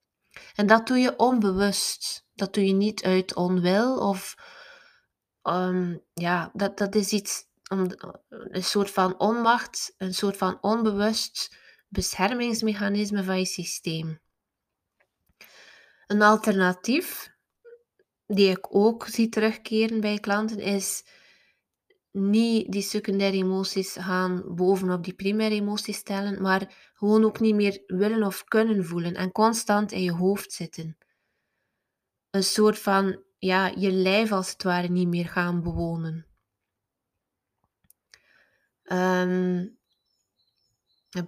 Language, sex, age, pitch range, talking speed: Dutch, female, 20-39, 185-215 Hz, 115 wpm